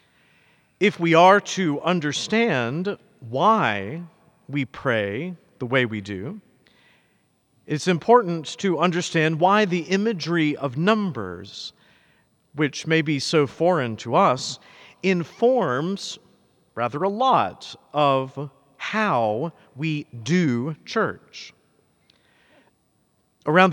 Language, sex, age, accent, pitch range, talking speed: English, male, 50-69, American, 145-185 Hz, 95 wpm